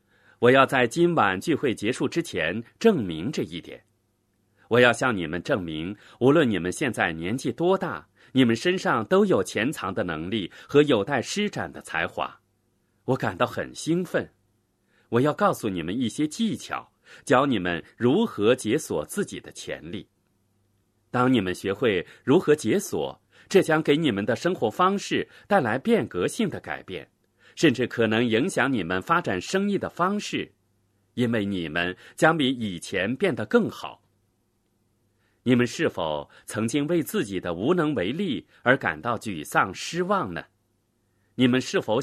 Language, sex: Chinese, male